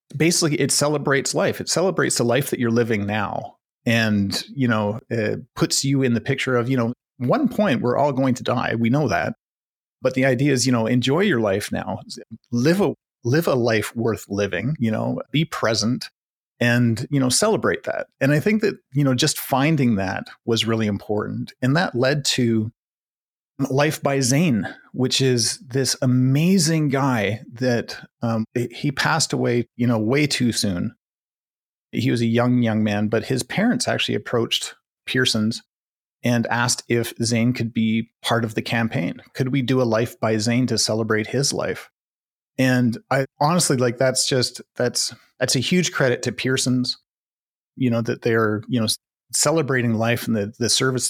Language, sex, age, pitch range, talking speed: English, male, 30-49, 115-135 Hz, 180 wpm